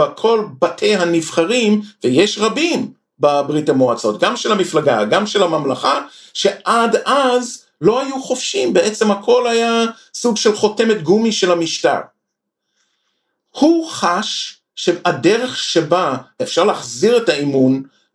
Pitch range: 170-255 Hz